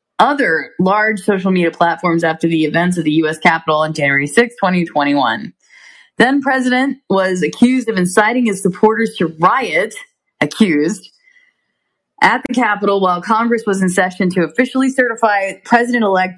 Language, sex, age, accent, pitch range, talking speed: English, female, 20-39, American, 165-220 Hz, 140 wpm